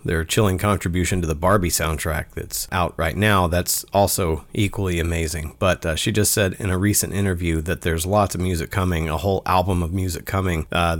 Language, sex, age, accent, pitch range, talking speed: English, male, 40-59, American, 80-105 Hz, 200 wpm